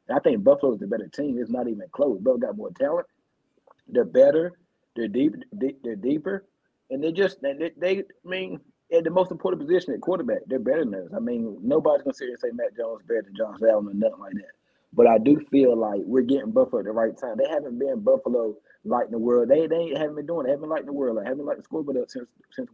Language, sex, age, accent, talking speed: English, male, 30-49, American, 250 wpm